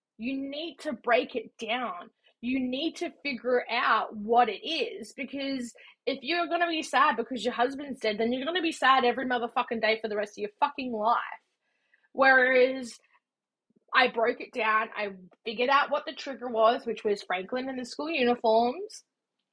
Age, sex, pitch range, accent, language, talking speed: 20-39, female, 220-275 Hz, Australian, English, 185 wpm